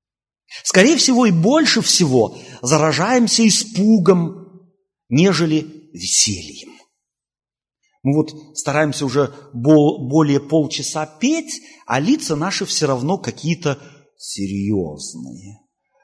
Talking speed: 85 wpm